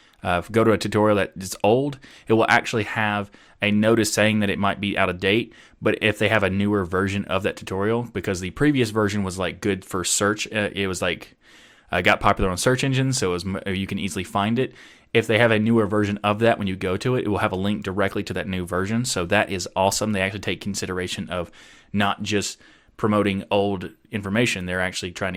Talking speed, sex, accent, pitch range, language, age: 235 wpm, male, American, 95-115 Hz, English, 20-39